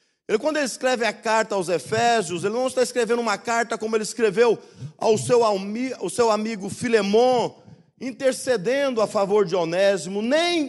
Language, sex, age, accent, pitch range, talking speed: Portuguese, male, 50-69, Brazilian, 230-275 Hz, 165 wpm